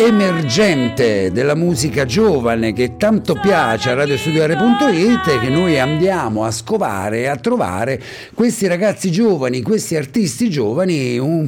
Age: 50-69